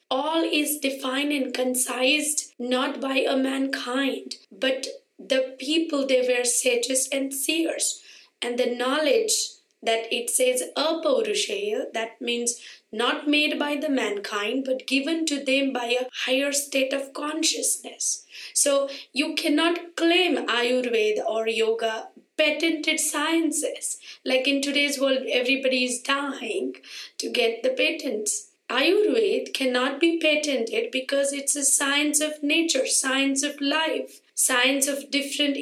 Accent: Indian